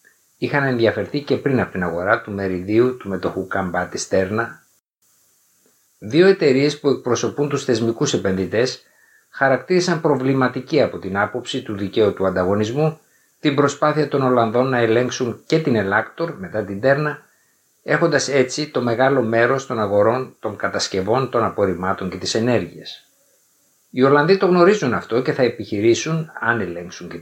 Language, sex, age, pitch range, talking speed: Greek, male, 60-79, 105-150 Hz, 150 wpm